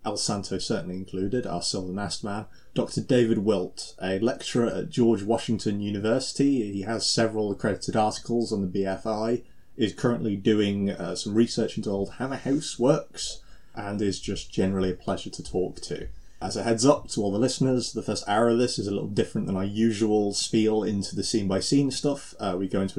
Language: English